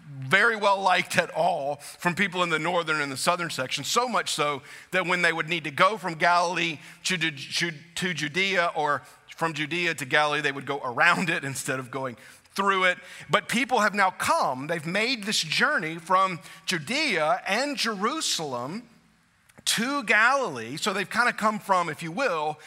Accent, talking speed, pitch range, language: American, 180 wpm, 150-200 Hz, English